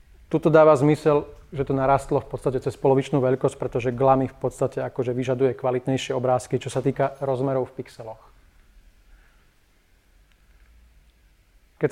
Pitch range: 125-145 Hz